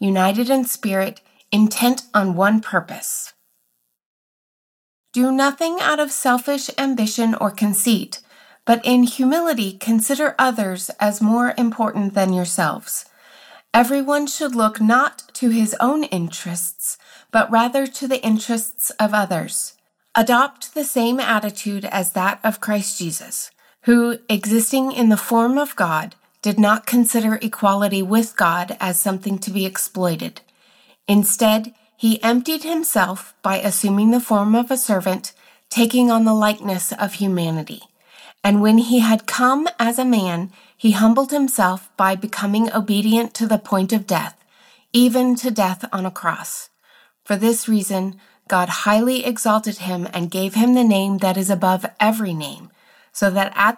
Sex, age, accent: female, 30-49, American